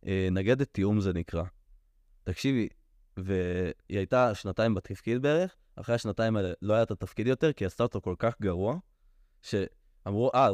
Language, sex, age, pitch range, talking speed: Hebrew, male, 20-39, 95-115 Hz, 155 wpm